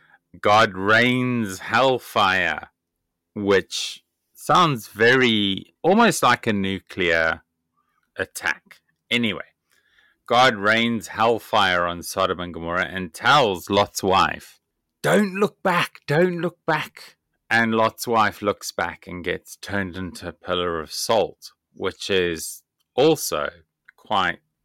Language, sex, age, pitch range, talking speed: English, male, 30-49, 95-115 Hz, 110 wpm